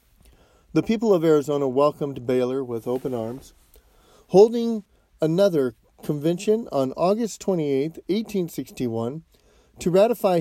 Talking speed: 105 wpm